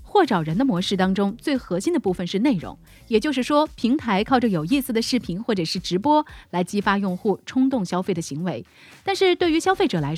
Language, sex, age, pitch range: Chinese, female, 30-49, 180-270 Hz